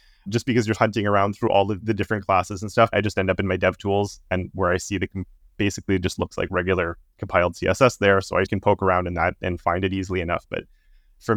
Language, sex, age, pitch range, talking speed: English, male, 20-39, 95-105 Hz, 255 wpm